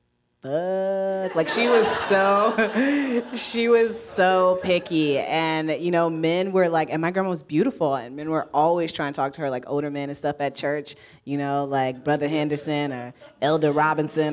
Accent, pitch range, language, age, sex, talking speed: American, 125-165 Hz, English, 20-39, female, 180 wpm